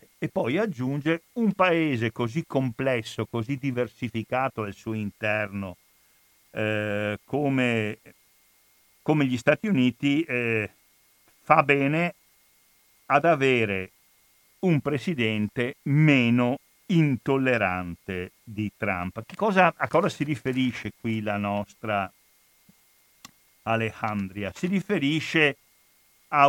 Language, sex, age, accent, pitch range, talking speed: Italian, male, 50-69, native, 110-150 Hz, 95 wpm